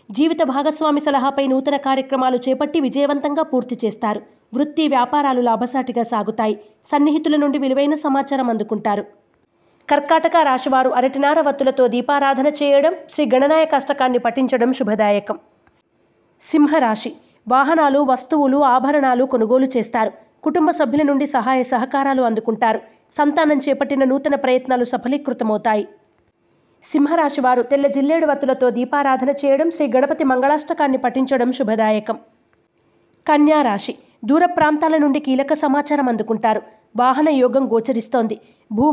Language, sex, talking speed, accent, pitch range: Telugu, female, 105 wpm, native, 245-290 Hz